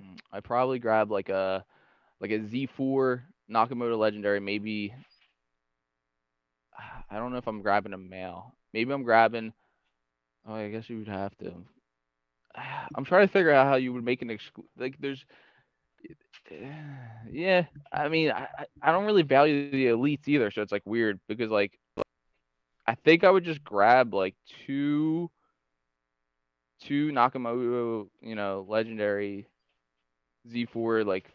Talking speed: 145 wpm